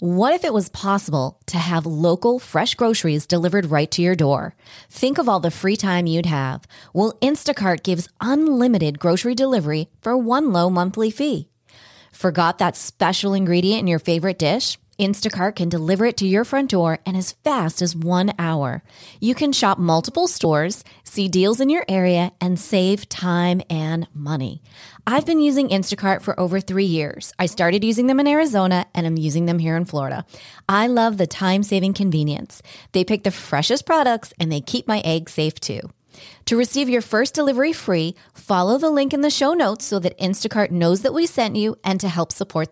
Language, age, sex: English, 30-49, female